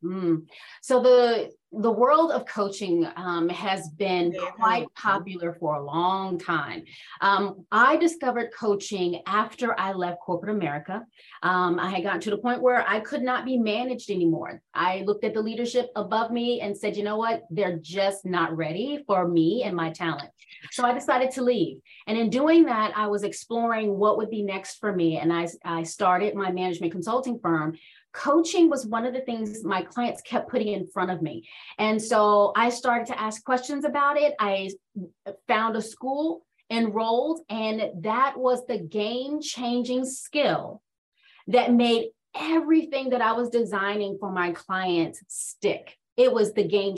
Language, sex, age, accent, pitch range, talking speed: English, female, 30-49, American, 190-245 Hz, 170 wpm